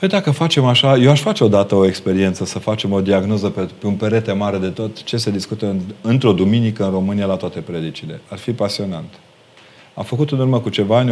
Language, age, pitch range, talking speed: Romanian, 30-49, 95-130 Hz, 225 wpm